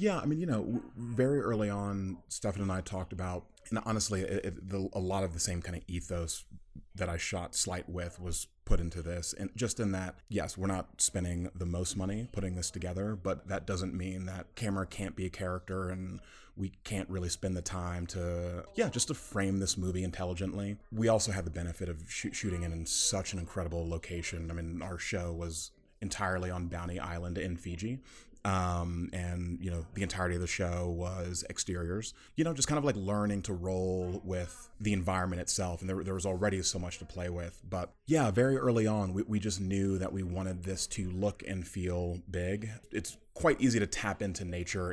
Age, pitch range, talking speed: 30-49, 90-100 Hz, 205 wpm